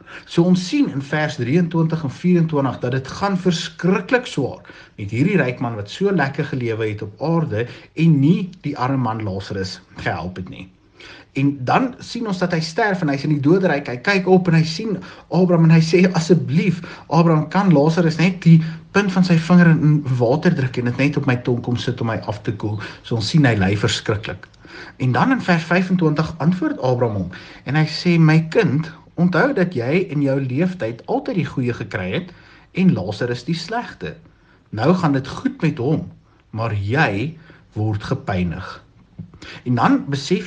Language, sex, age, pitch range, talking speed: English, male, 50-69, 120-175 Hz, 190 wpm